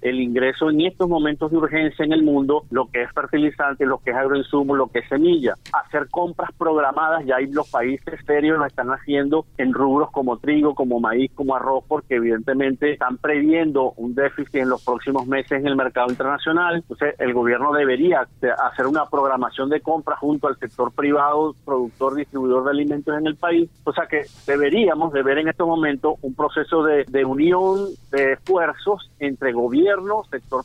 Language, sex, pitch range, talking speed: Spanish, male, 130-160 Hz, 180 wpm